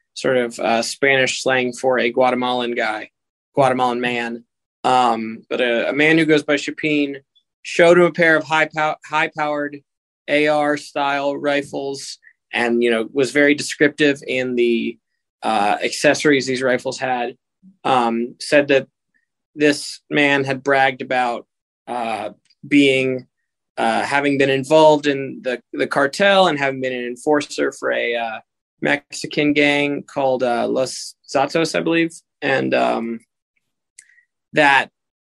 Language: English